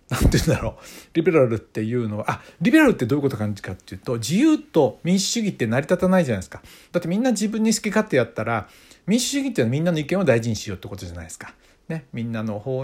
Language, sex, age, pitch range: Japanese, male, 60-79, 115-185 Hz